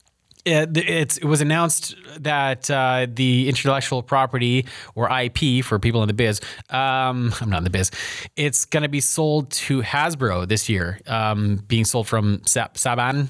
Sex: male